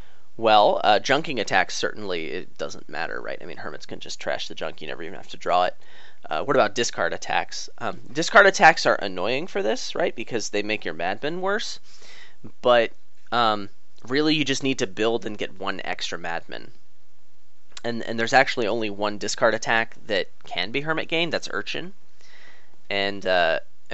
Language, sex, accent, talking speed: English, male, American, 185 wpm